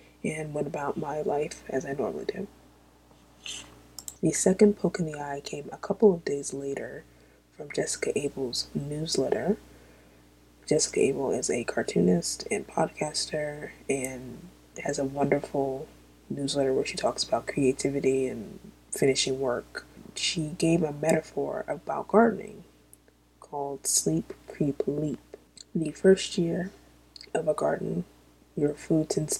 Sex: female